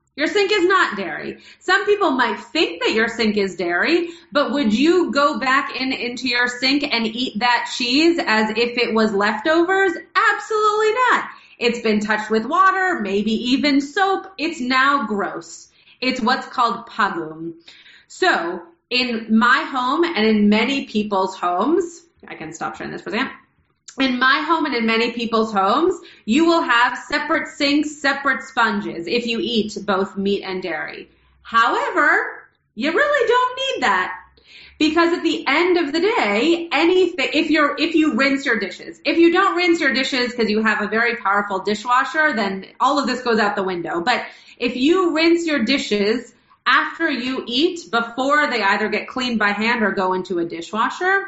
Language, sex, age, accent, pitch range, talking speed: English, female, 30-49, American, 220-330 Hz, 175 wpm